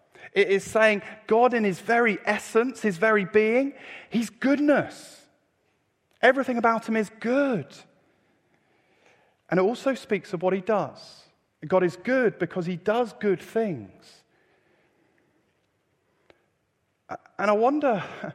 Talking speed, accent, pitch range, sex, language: 120 wpm, British, 170-220 Hz, male, English